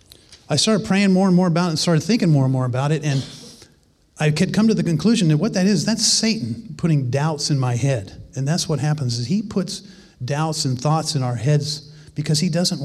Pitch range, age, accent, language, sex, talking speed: 125-150 Hz, 40-59, American, English, male, 235 wpm